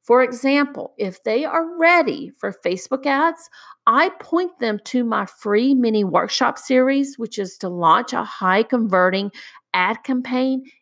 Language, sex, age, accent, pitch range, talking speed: English, female, 50-69, American, 190-260 Hz, 150 wpm